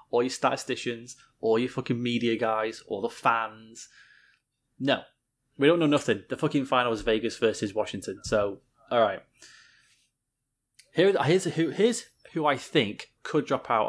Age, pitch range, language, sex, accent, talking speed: 20-39, 115-140 Hz, English, male, British, 155 wpm